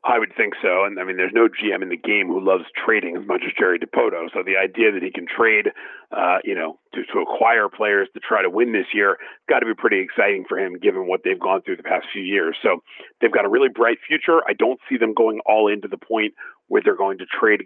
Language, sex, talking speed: English, male, 265 wpm